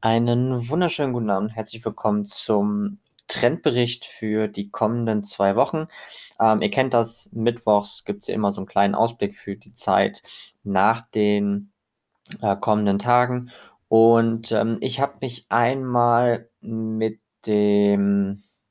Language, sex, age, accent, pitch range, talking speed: German, male, 20-39, German, 100-120 Hz, 135 wpm